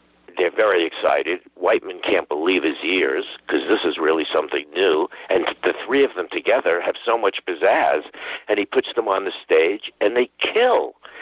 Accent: American